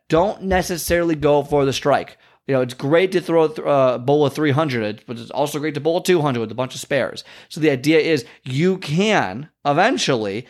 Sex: male